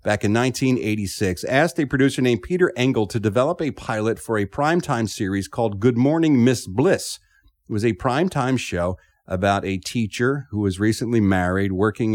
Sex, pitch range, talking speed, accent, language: male, 100-135 Hz, 175 wpm, American, English